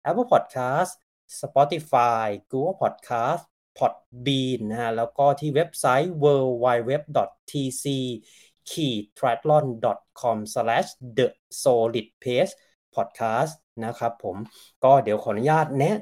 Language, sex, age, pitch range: Thai, male, 20-39, 125-165 Hz